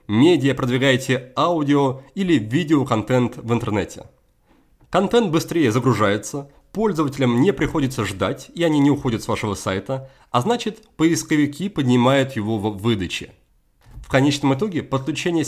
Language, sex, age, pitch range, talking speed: Russian, male, 30-49, 125-165 Hz, 125 wpm